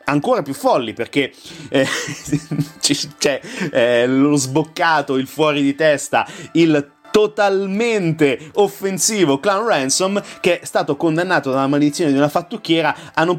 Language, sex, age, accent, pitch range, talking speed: Italian, male, 30-49, native, 135-180 Hz, 130 wpm